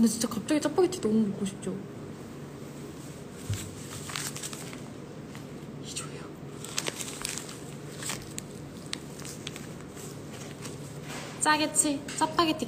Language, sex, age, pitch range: Korean, female, 20-39, 210-285 Hz